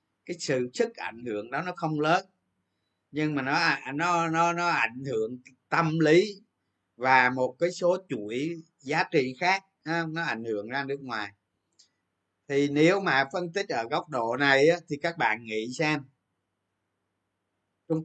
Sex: male